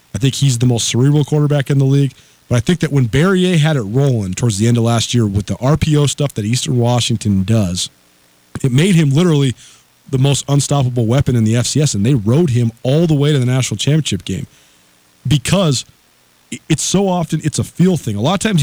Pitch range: 115-155 Hz